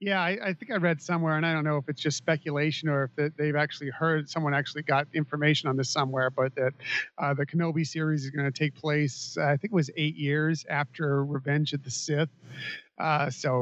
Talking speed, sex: 230 wpm, male